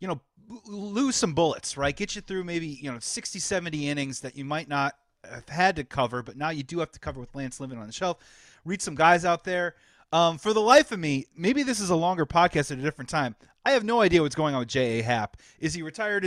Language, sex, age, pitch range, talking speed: English, male, 30-49, 140-175 Hz, 260 wpm